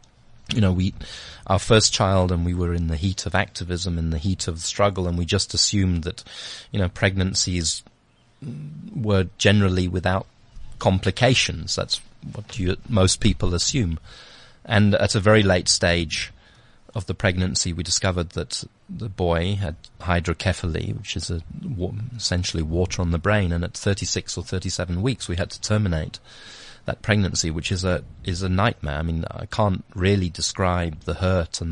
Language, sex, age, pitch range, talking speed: English, male, 30-49, 85-105 Hz, 165 wpm